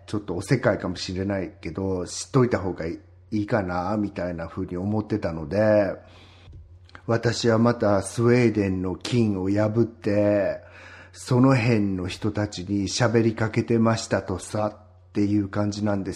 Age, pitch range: 50-69, 95-120 Hz